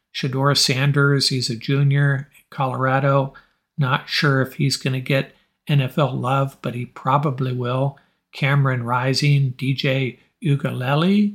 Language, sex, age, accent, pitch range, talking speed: English, male, 60-79, American, 130-145 Hz, 125 wpm